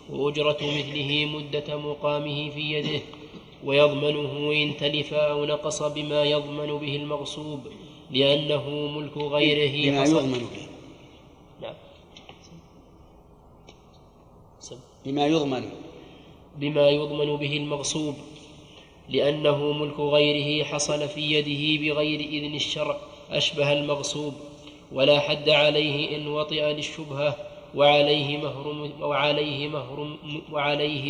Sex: male